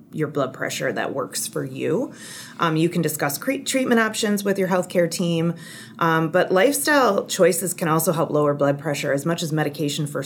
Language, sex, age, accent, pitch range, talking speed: English, female, 30-49, American, 150-190 Hz, 185 wpm